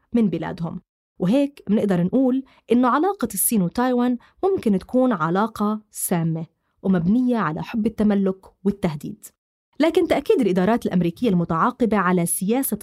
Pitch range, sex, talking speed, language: 185-235 Hz, female, 115 wpm, Arabic